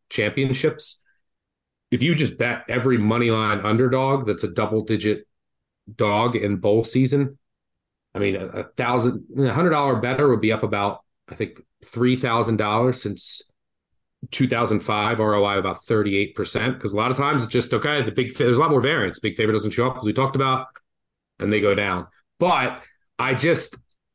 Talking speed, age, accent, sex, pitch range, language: 175 wpm, 30-49, American, male, 105-130 Hz, English